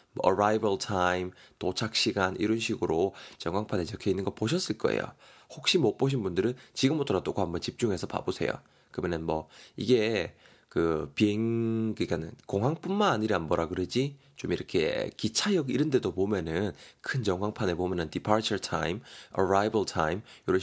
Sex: male